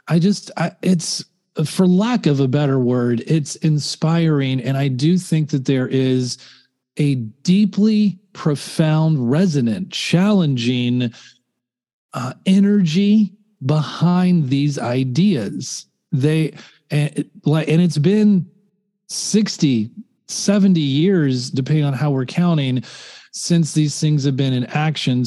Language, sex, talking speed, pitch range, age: English, male, 110 wpm, 135-175 Hz, 40-59